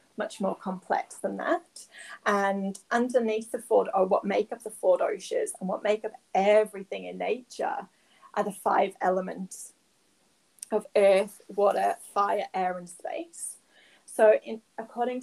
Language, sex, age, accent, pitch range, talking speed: English, female, 30-49, British, 195-245 Hz, 145 wpm